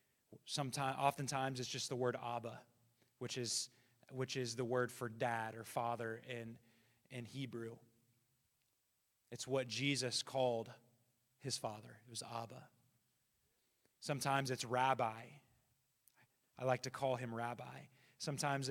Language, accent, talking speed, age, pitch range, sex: English, American, 125 wpm, 20-39, 120-140 Hz, male